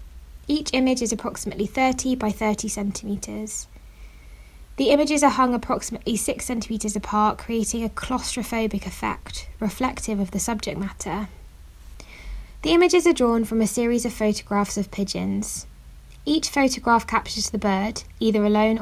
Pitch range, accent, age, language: 190-230 Hz, British, 20-39, English